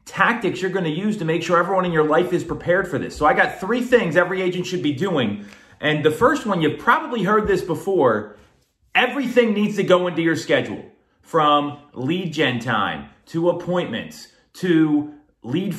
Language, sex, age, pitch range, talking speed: English, male, 30-49, 145-190 Hz, 190 wpm